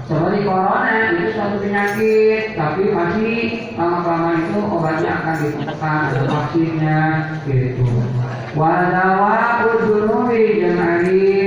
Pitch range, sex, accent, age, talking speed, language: 150-185 Hz, male, native, 40-59, 100 wpm, Indonesian